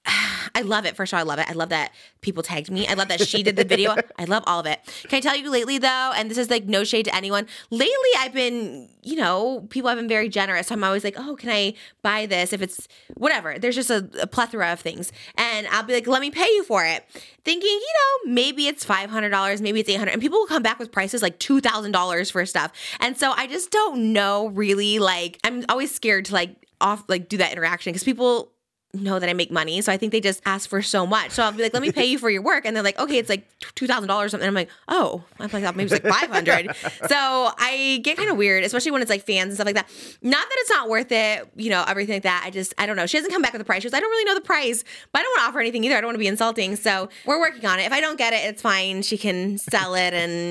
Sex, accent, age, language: female, American, 20-39, English